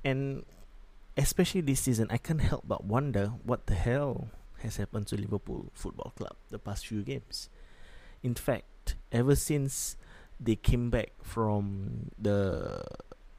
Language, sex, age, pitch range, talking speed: English, male, 20-39, 100-125 Hz, 140 wpm